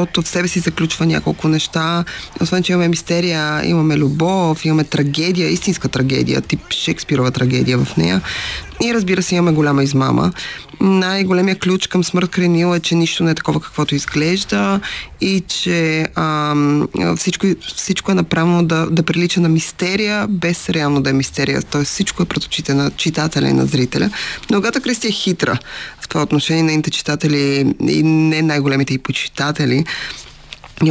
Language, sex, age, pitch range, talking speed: Bulgarian, female, 20-39, 150-190 Hz, 165 wpm